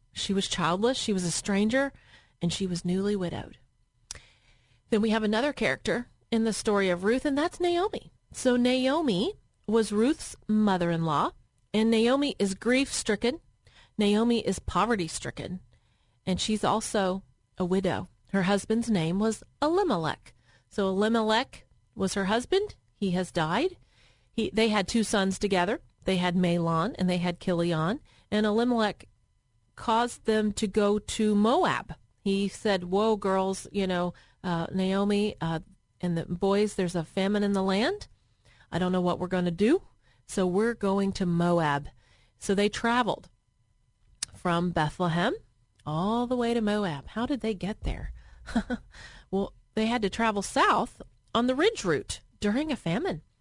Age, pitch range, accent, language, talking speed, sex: 30-49, 175-225 Hz, American, English, 155 wpm, female